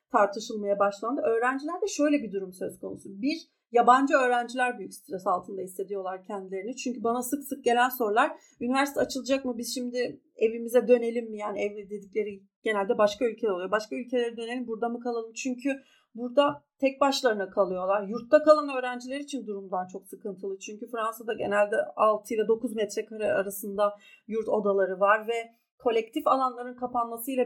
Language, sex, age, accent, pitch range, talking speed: Turkish, female, 40-59, native, 210-250 Hz, 155 wpm